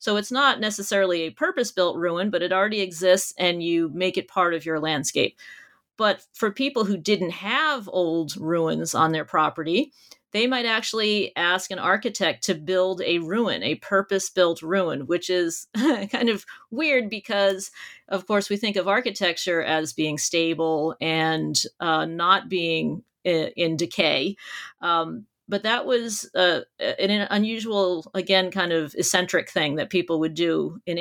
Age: 40-59